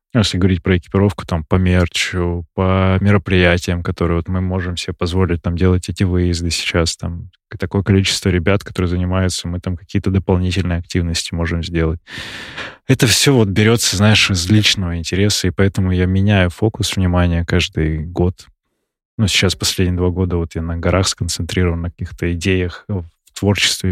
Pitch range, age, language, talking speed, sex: 90-100 Hz, 20-39, Russian, 160 wpm, male